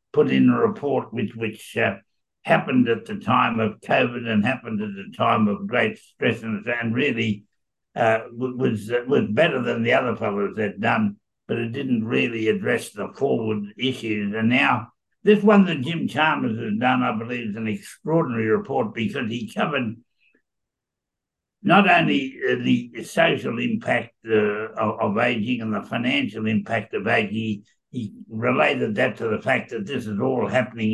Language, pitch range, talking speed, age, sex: English, 105-130 Hz, 165 wpm, 60-79, male